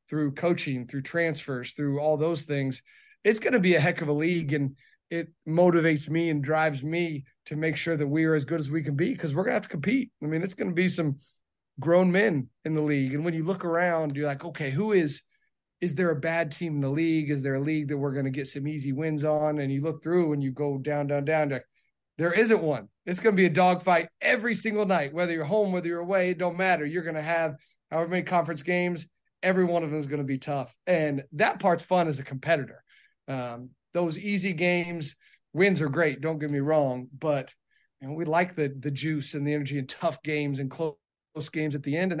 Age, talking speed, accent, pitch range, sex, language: 30-49, 245 wpm, American, 140-175 Hz, male, English